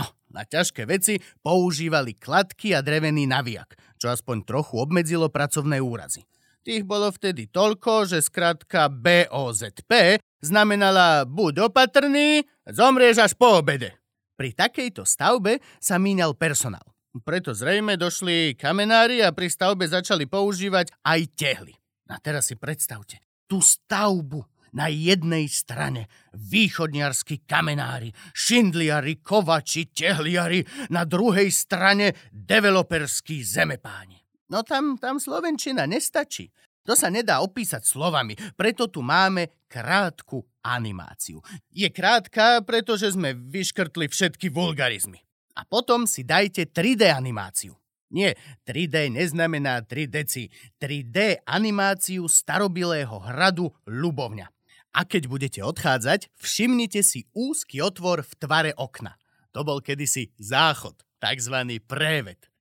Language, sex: Slovak, male